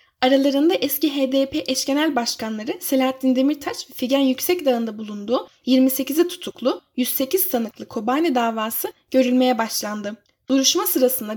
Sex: female